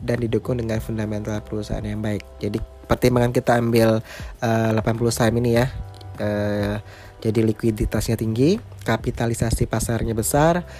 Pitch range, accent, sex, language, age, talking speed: 110-125 Hz, native, male, Indonesian, 20-39, 115 wpm